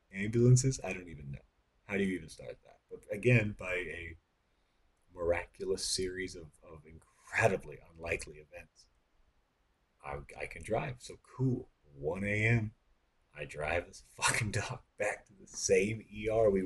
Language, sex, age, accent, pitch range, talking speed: English, male, 30-49, American, 80-120 Hz, 150 wpm